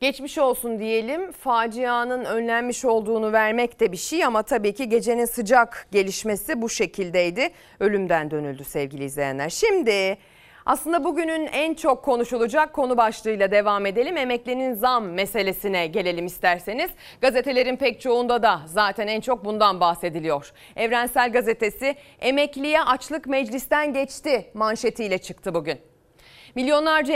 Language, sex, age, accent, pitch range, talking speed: Turkish, female, 30-49, native, 200-275 Hz, 125 wpm